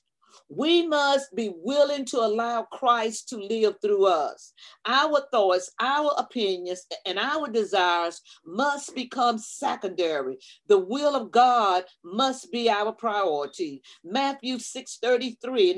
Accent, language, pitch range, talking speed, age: American, English, 205-270 Hz, 120 wpm, 40-59